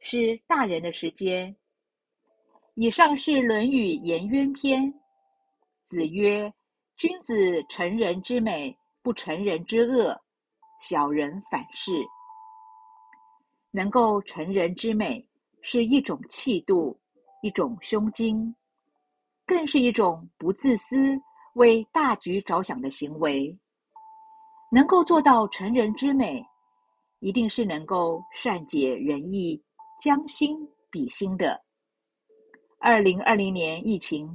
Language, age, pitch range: Chinese, 50-69, 180-275 Hz